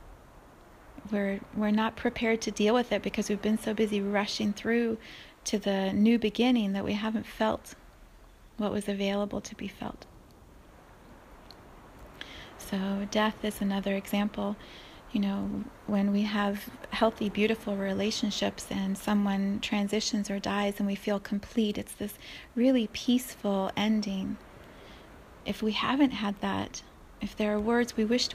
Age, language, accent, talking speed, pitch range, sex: 30-49, English, American, 140 wpm, 205-230 Hz, female